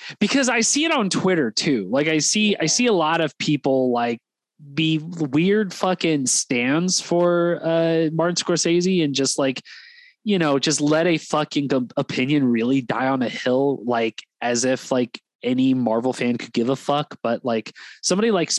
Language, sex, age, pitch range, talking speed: English, male, 20-39, 135-195 Hz, 180 wpm